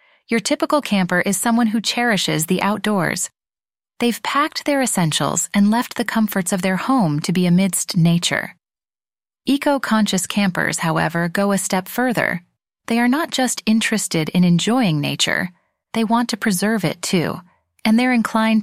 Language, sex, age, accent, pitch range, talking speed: English, female, 30-49, American, 180-230 Hz, 155 wpm